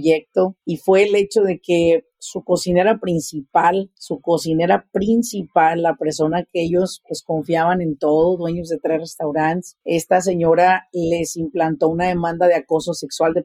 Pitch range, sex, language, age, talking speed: 165-195 Hz, female, Spanish, 40-59, 155 wpm